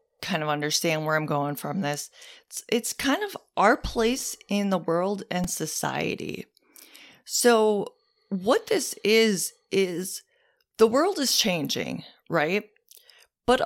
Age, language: 30-49, English